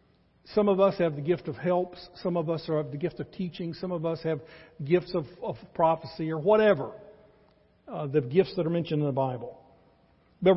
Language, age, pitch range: English, 60-79, 145-185 Hz